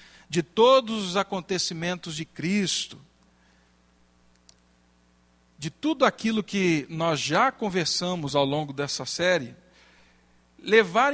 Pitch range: 130-190 Hz